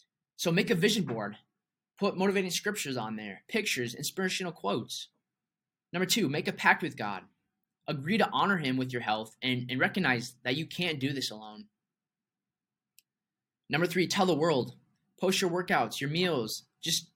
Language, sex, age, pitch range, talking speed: English, male, 20-39, 135-185 Hz, 165 wpm